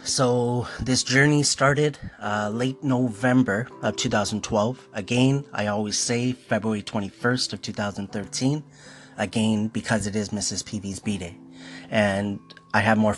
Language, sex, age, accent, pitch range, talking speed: English, male, 30-49, American, 100-115 Hz, 125 wpm